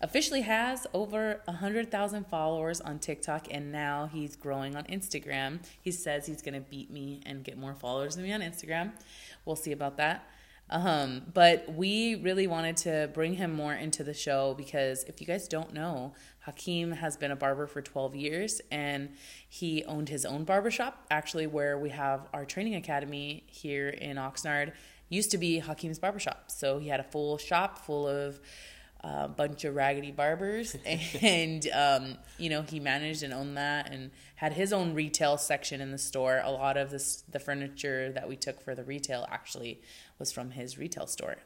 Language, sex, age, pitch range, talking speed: English, female, 20-39, 140-165 Hz, 185 wpm